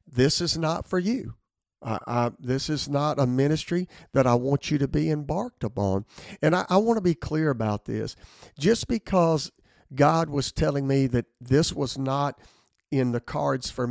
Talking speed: 175 wpm